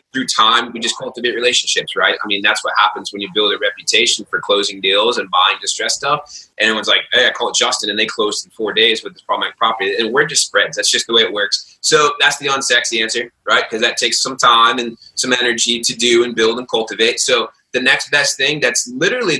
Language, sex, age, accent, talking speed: English, male, 20-39, American, 250 wpm